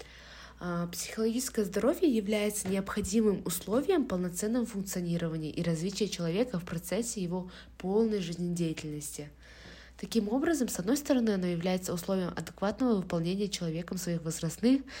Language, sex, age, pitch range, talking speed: Russian, female, 20-39, 165-205 Hz, 110 wpm